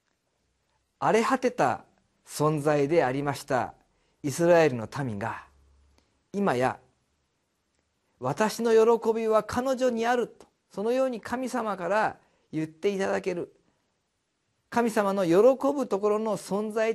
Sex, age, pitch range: male, 40-59, 145-225 Hz